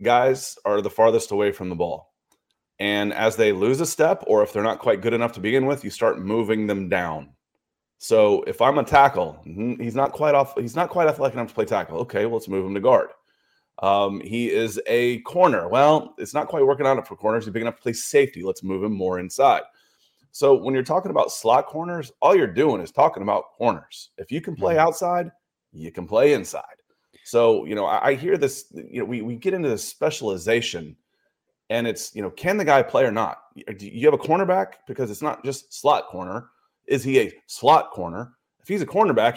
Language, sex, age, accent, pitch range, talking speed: English, male, 30-49, American, 110-160 Hz, 220 wpm